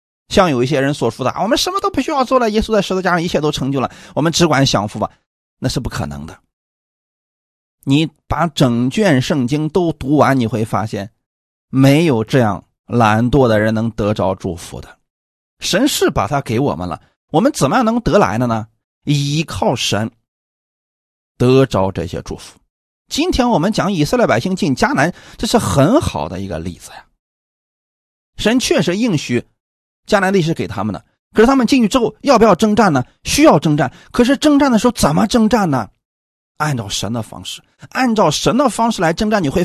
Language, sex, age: Chinese, male, 30-49